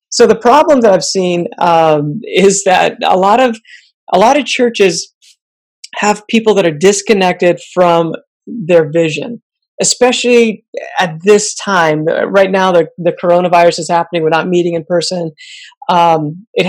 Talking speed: 160 wpm